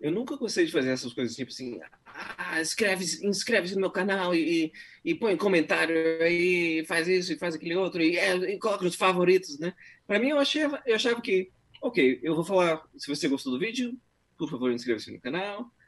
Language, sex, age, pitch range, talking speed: Portuguese, male, 20-39, 125-200 Hz, 210 wpm